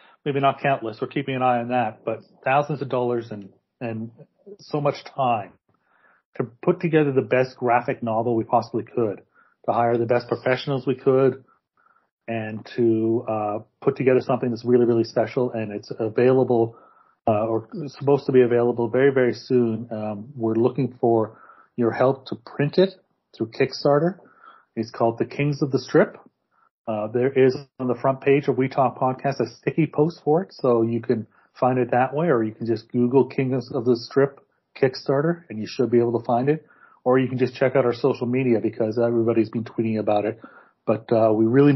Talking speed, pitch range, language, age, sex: 195 wpm, 115-135 Hz, English, 40-59, male